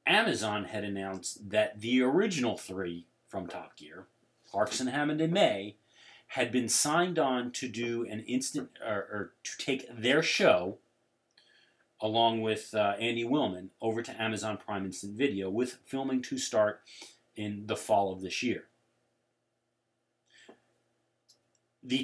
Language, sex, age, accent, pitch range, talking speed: English, male, 40-59, American, 110-140 Hz, 140 wpm